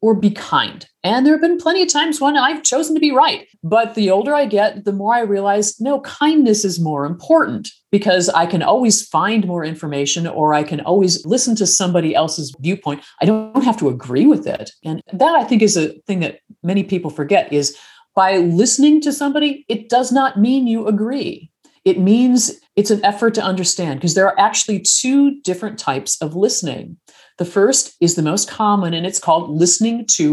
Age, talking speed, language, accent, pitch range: 40-59, 200 wpm, English, American, 160-225 Hz